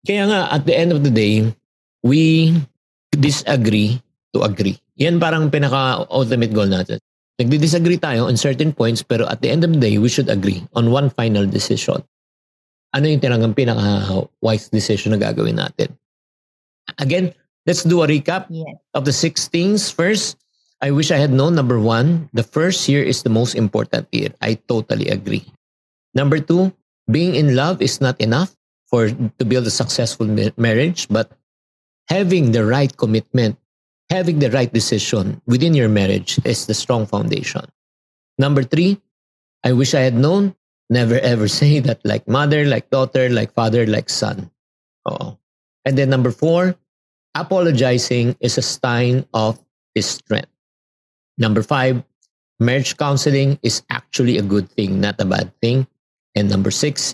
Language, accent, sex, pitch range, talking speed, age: Filipino, native, male, 110-150 Hz, 155 wpm, 50-69